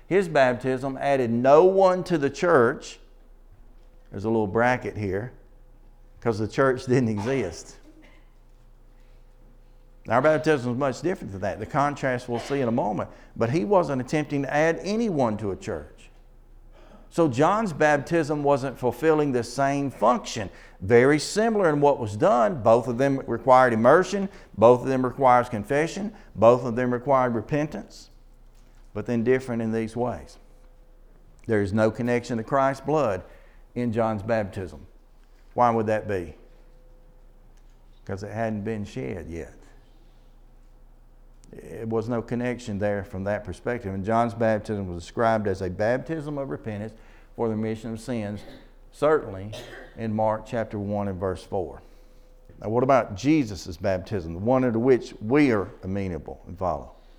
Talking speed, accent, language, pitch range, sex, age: 150 wpm, American, English, 110-135 Hz, male, 50-69